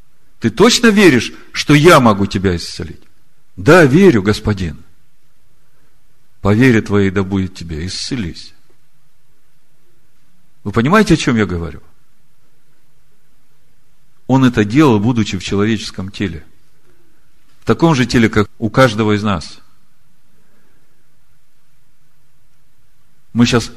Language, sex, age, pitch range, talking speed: Russian, male, 50-69, 95-125 Hz, 105 wpm